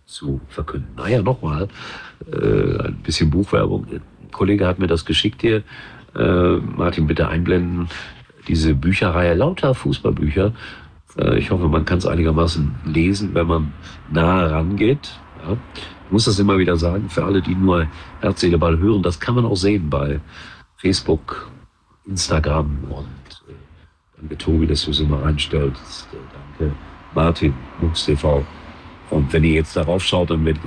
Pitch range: 80-95 Hz